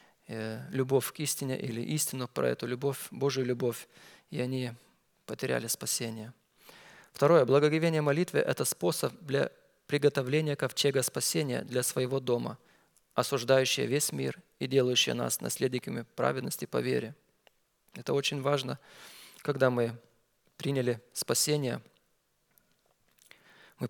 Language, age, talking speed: Russian, 20-39, 115 wpm